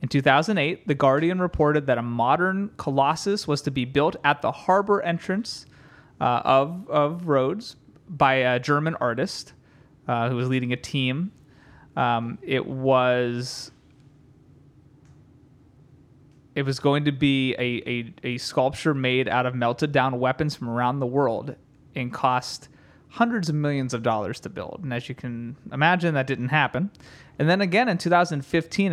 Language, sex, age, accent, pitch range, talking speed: English, male, 30-49, American, 130-150 Hz, 155 wpm